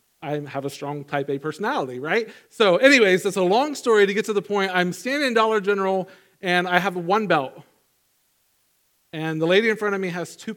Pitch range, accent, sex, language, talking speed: 155-200 Hz, American, male, English, 215 wpm